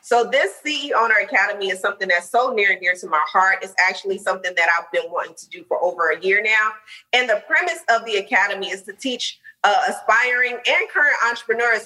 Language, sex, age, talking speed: English, female, 30-49, 220 wpm